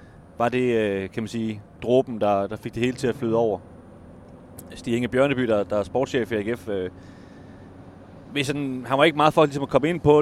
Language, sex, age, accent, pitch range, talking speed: Danish, male, 30-49, native, 110-130 Hz, 215 wpm